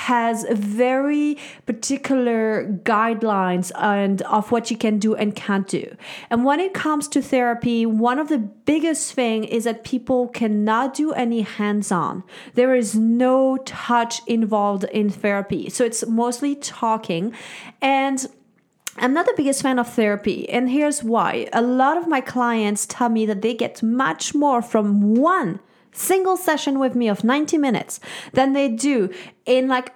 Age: 30-49